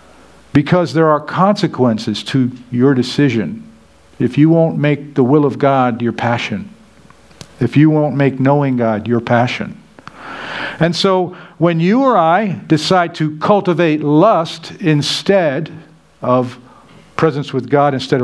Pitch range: 130-165 Hz